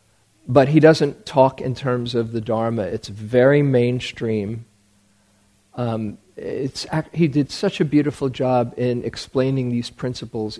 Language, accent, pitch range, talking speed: English, American, 110-135 Hz, 130 wpm